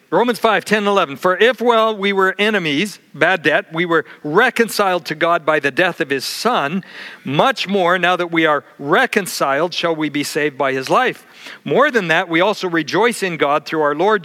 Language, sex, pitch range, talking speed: English, male, 155-200 Hz, 205 wpm